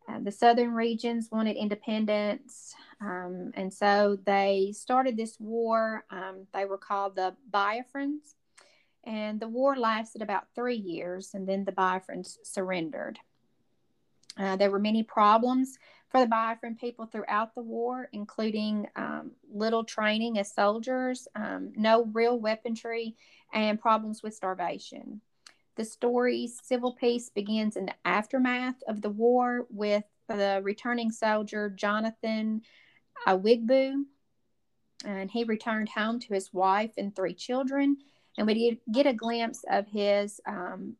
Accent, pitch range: American, 205-240 Hz